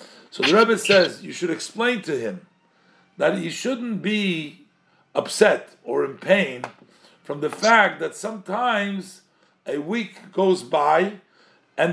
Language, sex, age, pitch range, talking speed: English, male, 50-69, 185-225 Hz, 135 wpm